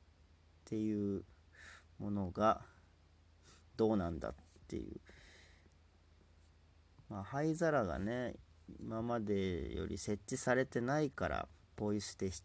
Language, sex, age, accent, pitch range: Japanese, male, 40-59, native, 80-115 Hz